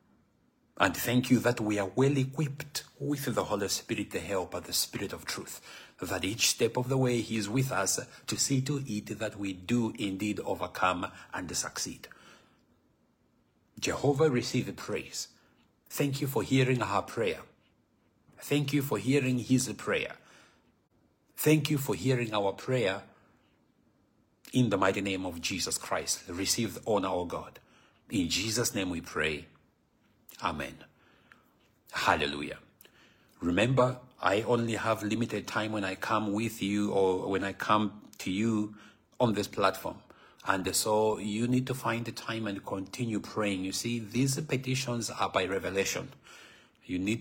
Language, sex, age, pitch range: English, male, 60-79, 100-125 Hz